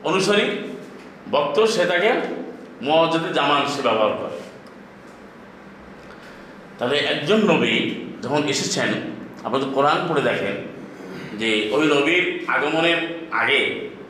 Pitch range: 160-215 Hz